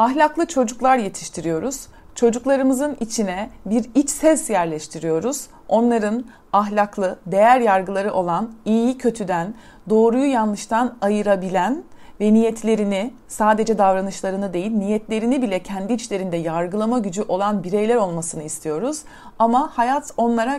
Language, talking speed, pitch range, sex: Turkish, 110 wpm, 195-265 Hz, female